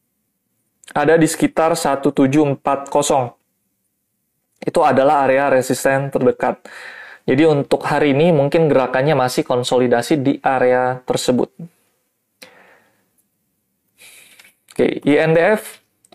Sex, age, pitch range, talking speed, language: male, 20-39, 135-165 Hz, 80 wpm, Indonesian